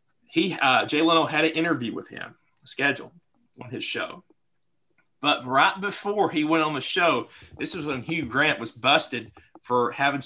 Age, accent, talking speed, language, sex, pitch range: 40-59, American, 175 wpm, English, male, 140-175 Hz